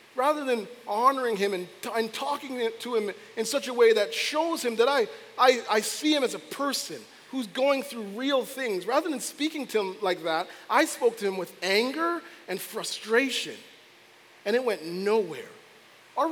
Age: 40-59